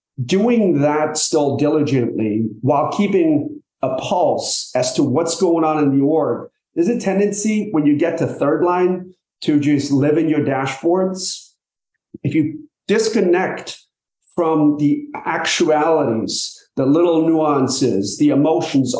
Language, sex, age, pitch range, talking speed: English, male, 40-59, 135-170 Hz, 135 wpm